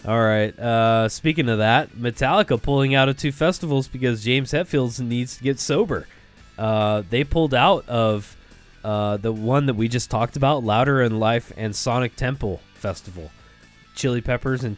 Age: 20-39